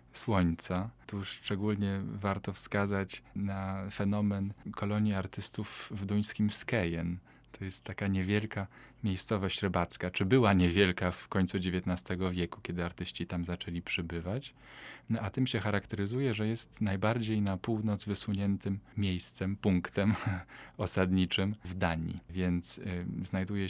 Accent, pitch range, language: native, 95-105 Hz, Polish